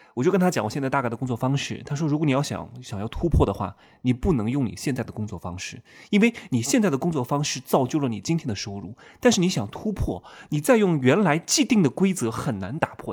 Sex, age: male, 20-39